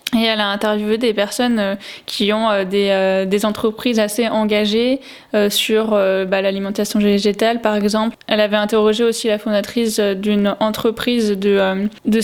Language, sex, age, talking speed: French, female, 20-39, 140 wpm